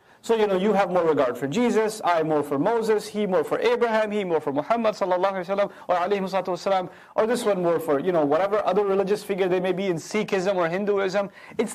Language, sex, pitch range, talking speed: English, male, 170-230 Hz, 220 wpm